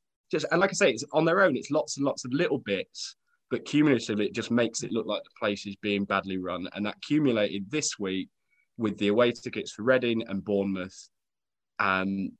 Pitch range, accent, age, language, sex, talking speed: 105-130 Hz, British, 20-39, English, male, 215 wpm